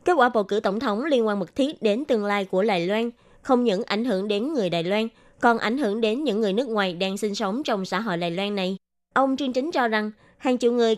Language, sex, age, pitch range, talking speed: Vietnamese, female, 20-39, 195-250 Hz, 270 wpm